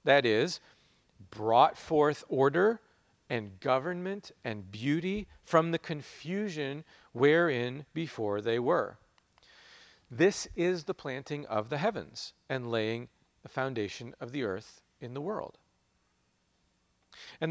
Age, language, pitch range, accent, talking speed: 40-59, English, 120-165 Hz, American, 115 wpm